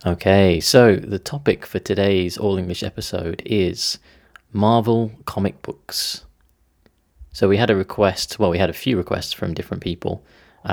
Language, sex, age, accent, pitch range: Japanese, male, 20-39, British, 85-95 Hz